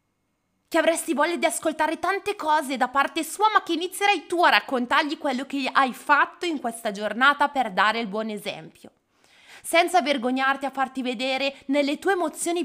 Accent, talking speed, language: native, 170 wpm, Italian